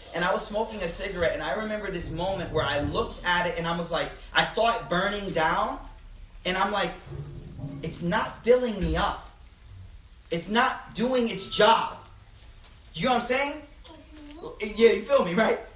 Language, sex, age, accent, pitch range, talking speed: English, male, 30-49, American, 170-255 Hz, 185 wpm